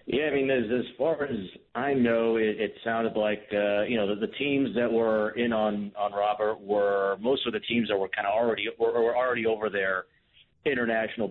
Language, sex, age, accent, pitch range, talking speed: English, male, 40-59, American, 95-110 Hz, 220 wpm